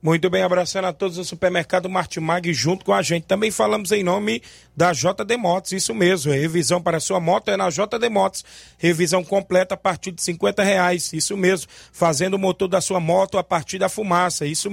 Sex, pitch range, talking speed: male, 180-205 Hz, 210 wpm